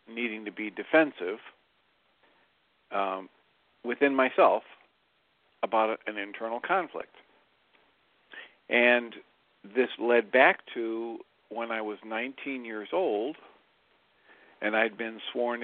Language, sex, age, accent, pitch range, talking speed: English, male, 50-69, American, 110-120 Hz, 100 wpm